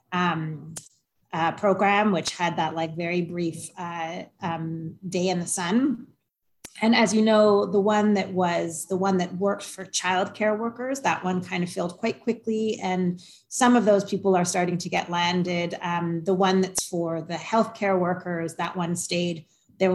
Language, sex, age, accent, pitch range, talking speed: English, female, 30-49, American, 175-205 Hz, 185 wpm